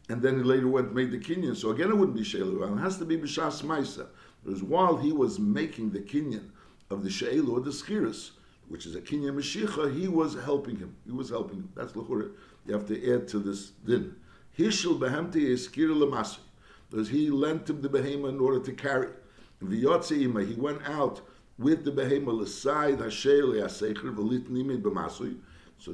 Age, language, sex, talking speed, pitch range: 60-79, English, male, 175 wpm, 110-145 Hz